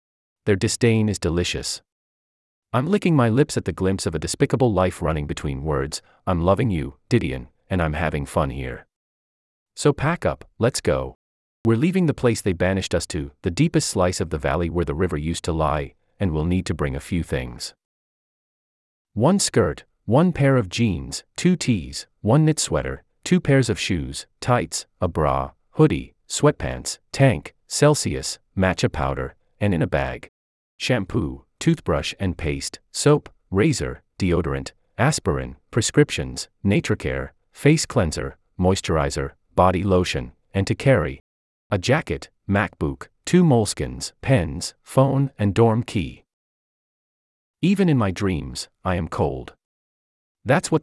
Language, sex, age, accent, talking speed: English, male, 30-49, American, 150 wpm